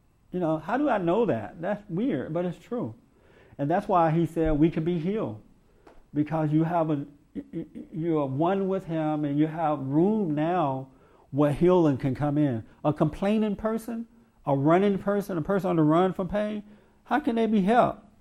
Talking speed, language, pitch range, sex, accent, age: 190 wpm, English, 140-175 Hz, male, American, 50-69